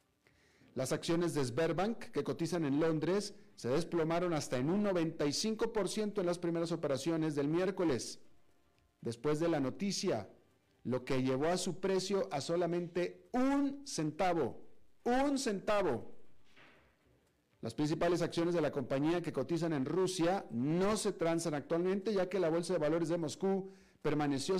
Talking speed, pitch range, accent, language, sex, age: 145 wpm, 145-190 Hz, Mexican, Spanish, male, 40-59